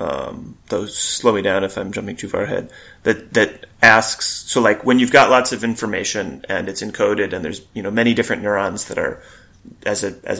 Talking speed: 215 wpm